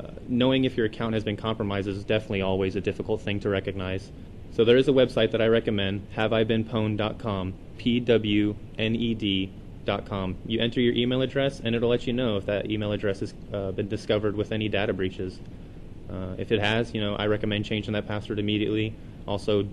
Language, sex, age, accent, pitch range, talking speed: English, male, 20-39, American, 100-115 Hz, 185 wpm